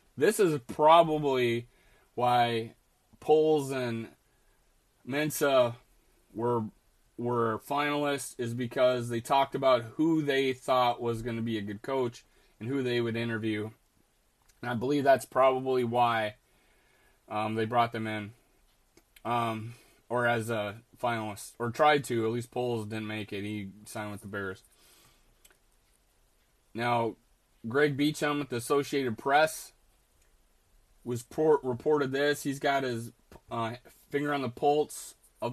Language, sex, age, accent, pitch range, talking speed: English, male, 20-39, American, 115-145 Hz, 135 wpm